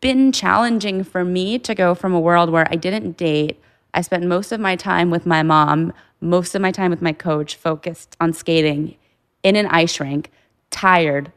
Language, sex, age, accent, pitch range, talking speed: English, female, 20-39, American, 160-195 Hz, 195 wpm